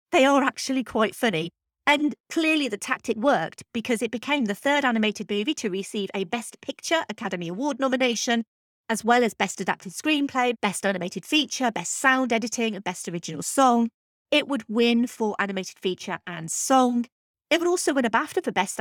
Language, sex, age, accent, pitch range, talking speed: English, female, 40-59, British, 195-280 Hz, 180 wpm